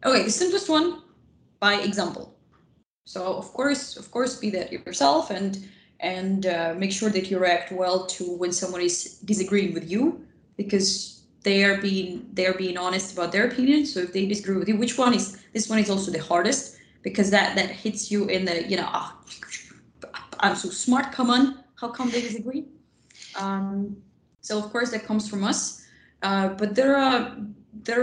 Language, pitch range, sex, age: English, 190-240 Hz, female, 20-39